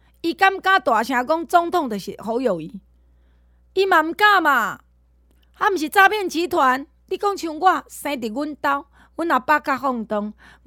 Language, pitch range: Chinese, 200-335 Hz